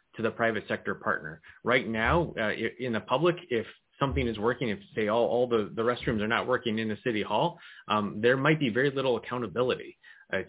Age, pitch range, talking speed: 30-49, 105-125 Hz, 210 wpm